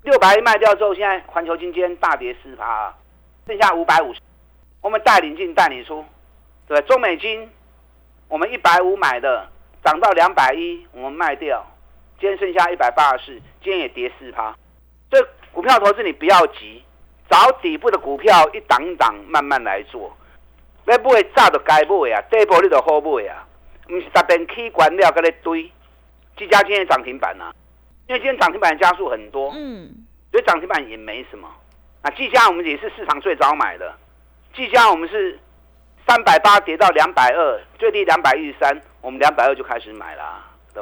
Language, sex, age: Chinese, male, 50-69